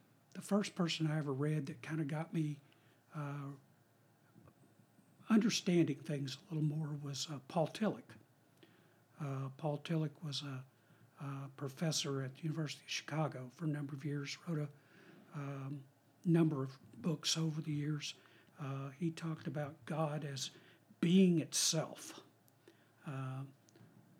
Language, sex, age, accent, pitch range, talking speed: English, male, 60-79, American, 140-160 Hz, 140 wpm